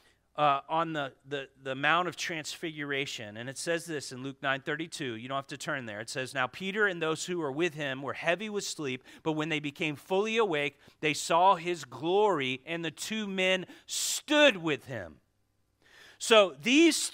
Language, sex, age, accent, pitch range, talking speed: English, male, 40-59, American, 170-265 Hz, 190 wpm